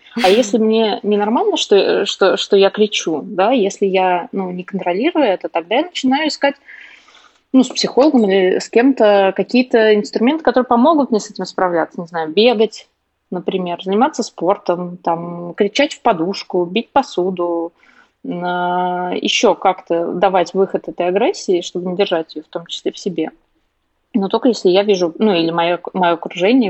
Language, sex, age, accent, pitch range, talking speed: Russian, female, 20-39, native, 180-230 Hz, 160 wpm